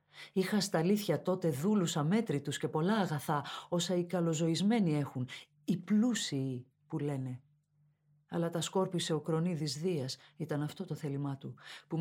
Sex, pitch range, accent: female, 155-195 Hz, native